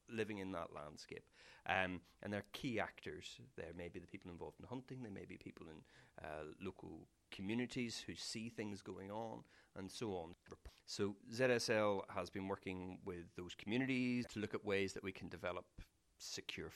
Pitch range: 90-115 Hz